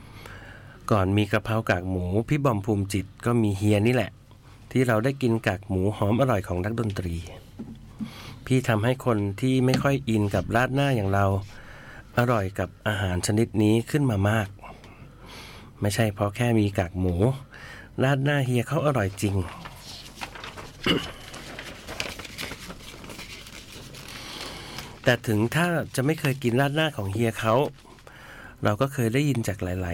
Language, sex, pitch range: Thai, male, 100-125 Hz